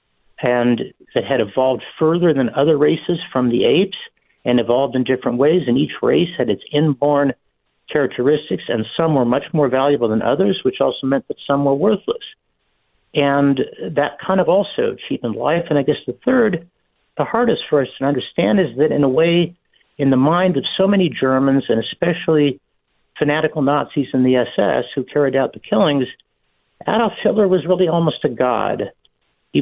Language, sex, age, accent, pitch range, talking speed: English, male, 60-79, American, 130-170 Hz, 180 wpm